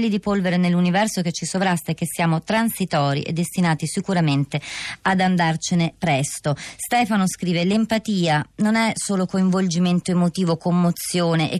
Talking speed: 135 wpm